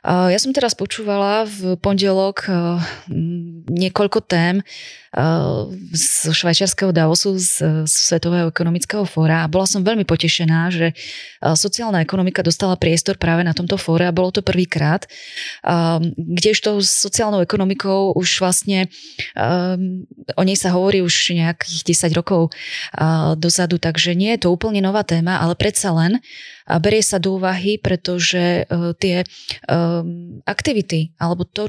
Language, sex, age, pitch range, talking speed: Slovak, female, 20-39, 170-195 Hz, 125 wpm